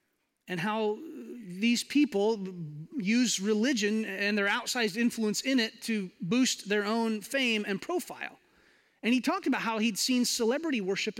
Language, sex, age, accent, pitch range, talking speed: English, male, 30-49, American, 185-250 Hz, 150 wpm